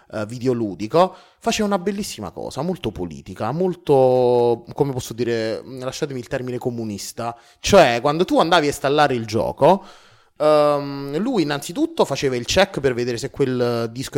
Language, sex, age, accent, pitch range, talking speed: Italian, male, 30-49, native, 120-165 Hz, 145 wpm